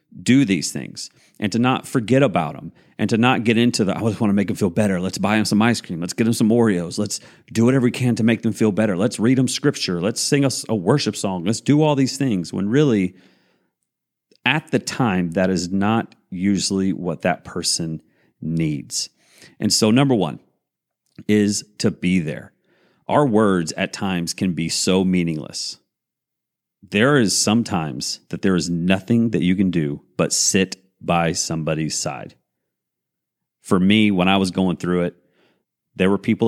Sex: male